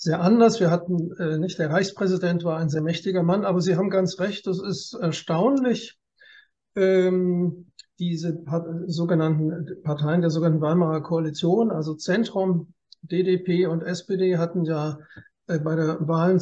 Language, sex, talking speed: German, male, 150 wpm